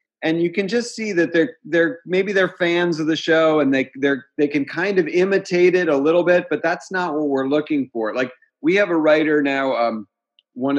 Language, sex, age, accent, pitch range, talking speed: English, male, 40-59, American, 125-170 Hz, 230 wpm